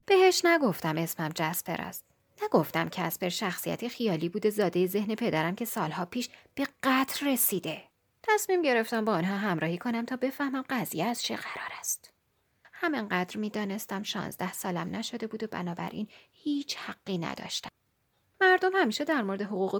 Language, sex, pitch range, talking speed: Persian, female, 185-280 Hz, 150 wpm